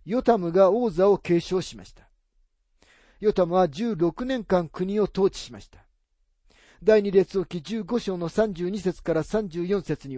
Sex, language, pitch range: male, Japanese, 145-210 Hz